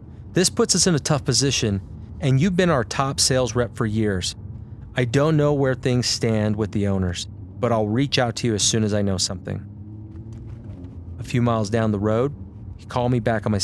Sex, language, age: male, English, 30-49